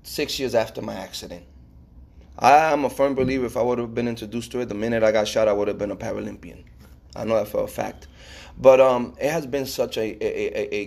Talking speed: 245 wpm